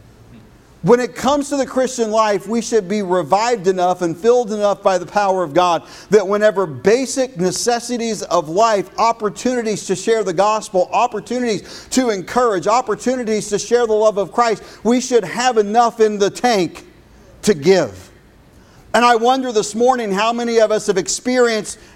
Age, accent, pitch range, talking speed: 50-69, American, 190-240 Hz, 165 wpm